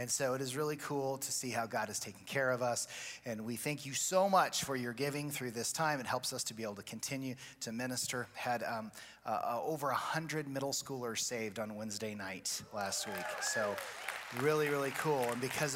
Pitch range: 120-160 Hz